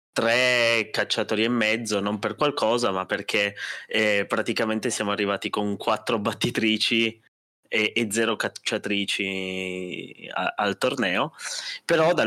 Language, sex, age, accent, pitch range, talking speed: Italian, male, 20-39, native, 100-120 Hz, 110 wpm